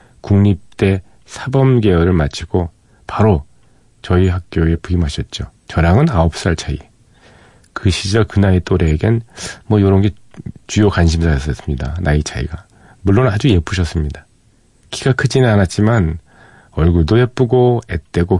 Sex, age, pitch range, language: male, 40-59, 85-115 Hz, Korean